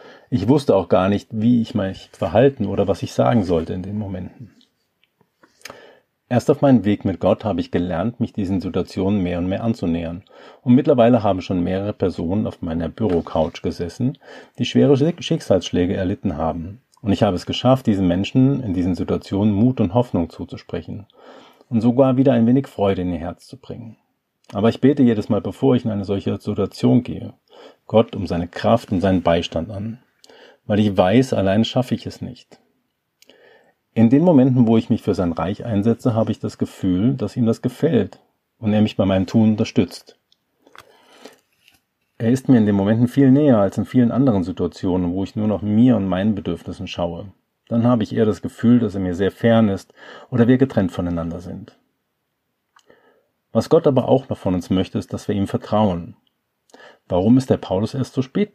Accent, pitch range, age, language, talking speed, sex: German, 95-125 Hz, 40-59, German, 190 wpm, male